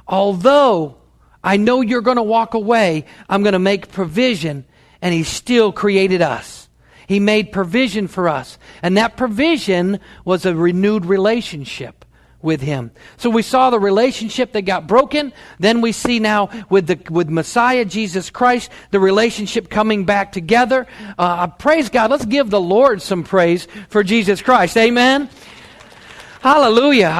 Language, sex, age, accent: English, male, 50-69, American